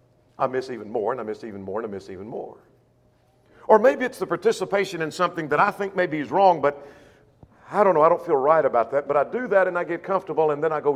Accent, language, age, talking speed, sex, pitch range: American, English, 50-69, 270 wpm, male, 140-225 Hz